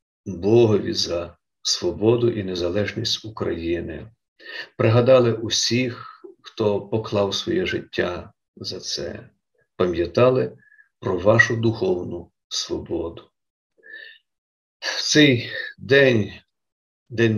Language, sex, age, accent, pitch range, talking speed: Ukrainian, male, 50-69, native, 105-125 Hz, 80 wpm